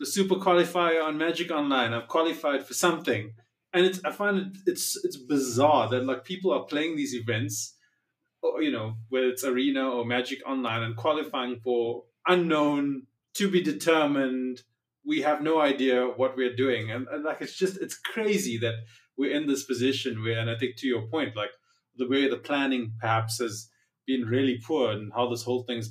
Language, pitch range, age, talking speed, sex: English, 115-145 Hz, 30-49, 190 wpm, male